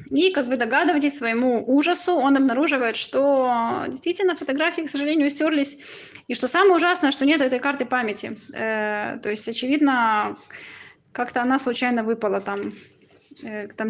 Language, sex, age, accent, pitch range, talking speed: Russian, female, 20-39, native, 220-270 Hz, 140 wpm